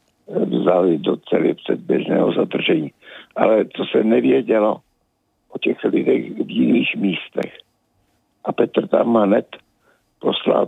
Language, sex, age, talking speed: Czech, male, 60-79, 110 wpm